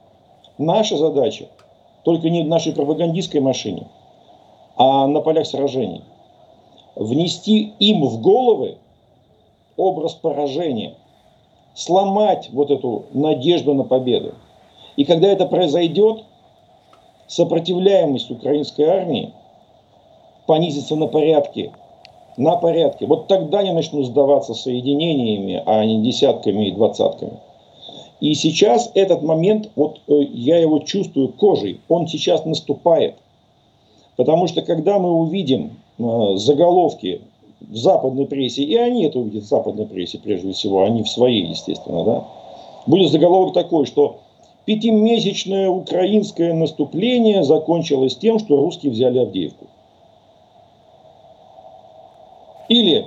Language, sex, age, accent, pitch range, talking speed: Russian, male, 50-69, native, 140-195 Hz, 110 wpm